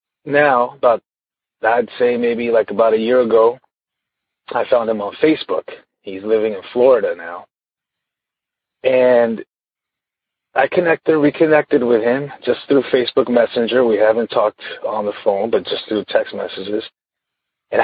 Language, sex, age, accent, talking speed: English, male, 40-59, American, 140 wpm